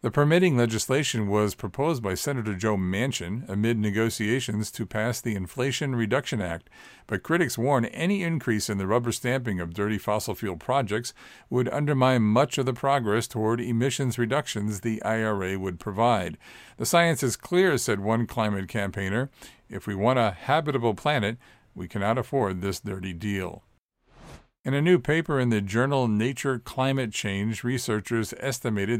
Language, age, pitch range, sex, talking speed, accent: English, 50-69, 105-130 Hz, male, 155 wpm, American